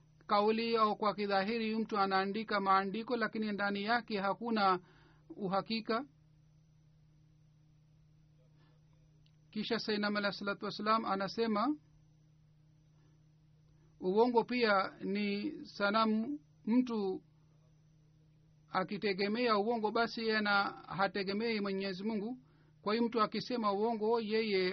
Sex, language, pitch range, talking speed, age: male, Swahili, 160-220 Hz, 85 wpm, 50-69